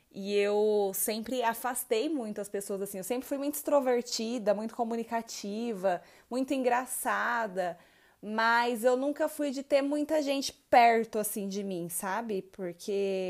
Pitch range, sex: 205-265 Hz, female